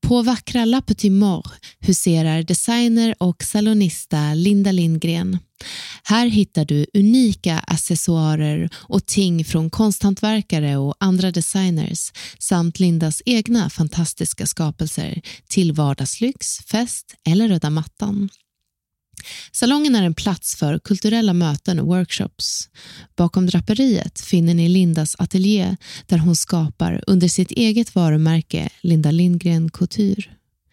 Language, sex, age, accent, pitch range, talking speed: Swedish, female, 20-39, native, 160-205 Hz, 115 wpm